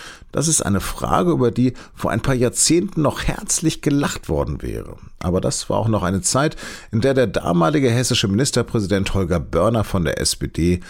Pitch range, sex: 90-120 Hz, male